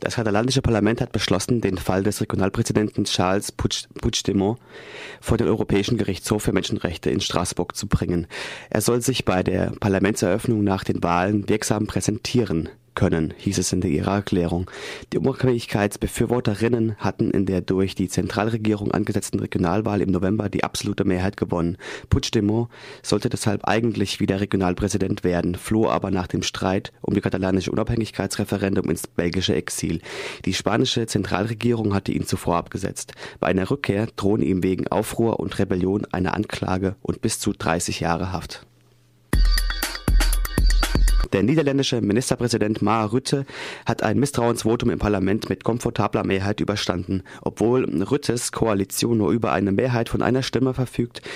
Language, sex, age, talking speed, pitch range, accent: German, male, 30-49, 145 wpm, 95-115 Hz, German